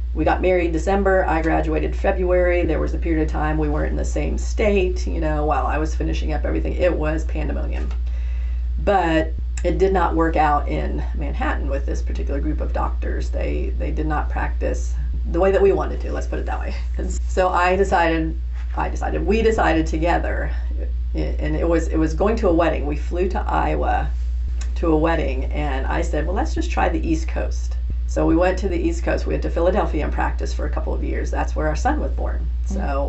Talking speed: 215 wpm